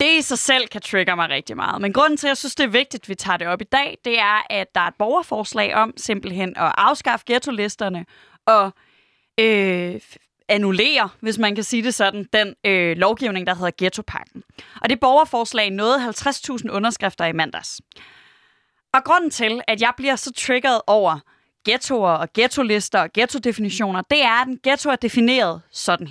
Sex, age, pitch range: female, 20-39, 195-260 Hz